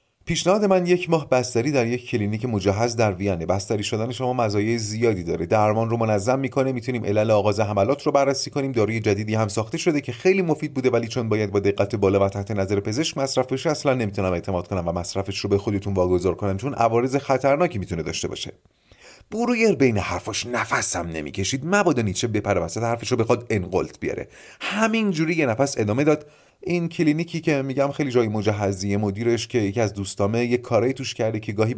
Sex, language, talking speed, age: male, Persian, 190 wpm, 30-49